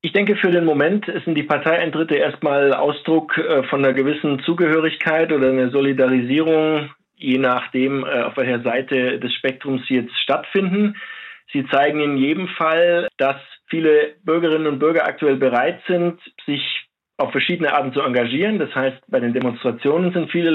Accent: German